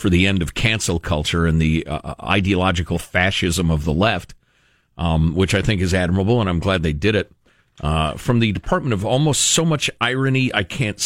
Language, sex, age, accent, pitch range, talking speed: English, male, 50-69, American, 90-145 Hz, 200 wpm